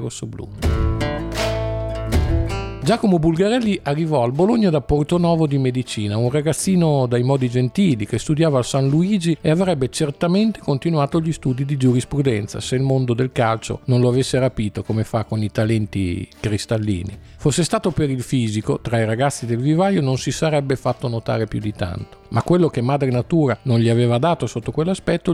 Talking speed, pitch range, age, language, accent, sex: 170 wpm, 115-155 Hz, 50-69, Italian, native, male